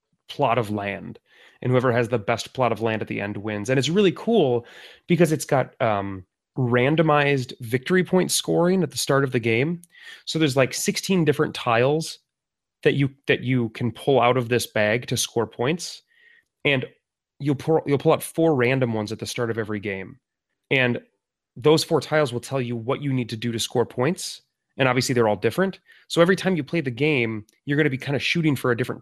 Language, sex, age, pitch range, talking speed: English, male, 30-49, 115-150 Hz, 215 wpm